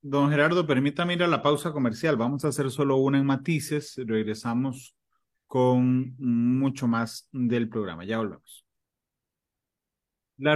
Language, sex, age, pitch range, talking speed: Spanish, male, 30-49, 120-150 Hz, 135 wpm